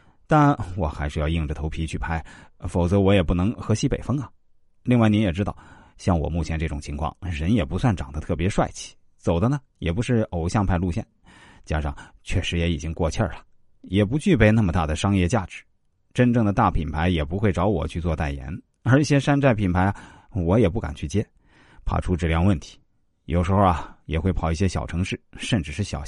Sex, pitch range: male, 85-120 Hz